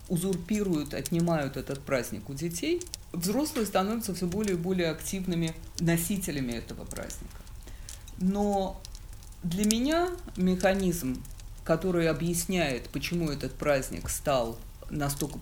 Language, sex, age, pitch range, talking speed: Russian, female, 50-69, 135-190 Hz, 105 wpm